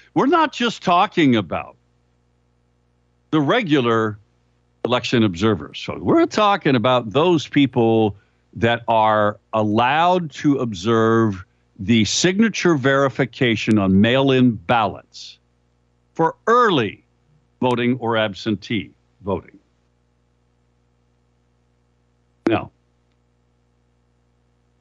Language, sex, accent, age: English, male, American, 60-79